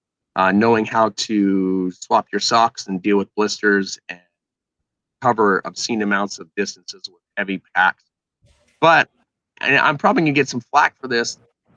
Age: 30-49